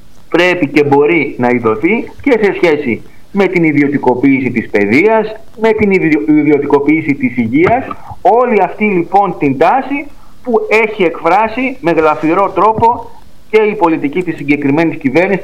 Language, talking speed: Greek, 135 wpm